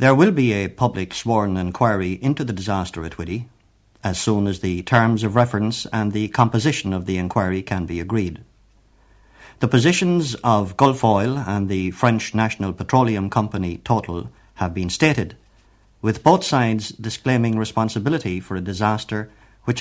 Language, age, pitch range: English, 60-79, 95-125 Hz